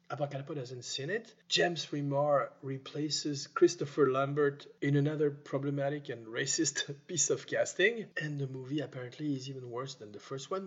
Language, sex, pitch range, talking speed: French, male, 135-160 Hz, 155 wpm